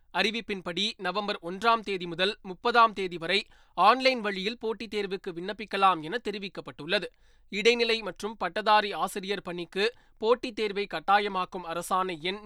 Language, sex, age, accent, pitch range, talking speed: Tamil, male, 20-39, native, 185-220 Hz, 120 wpm